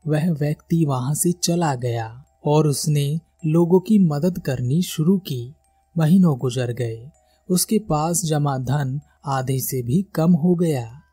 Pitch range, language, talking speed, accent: 135-180 Hz, Hindi, 150 wpm, native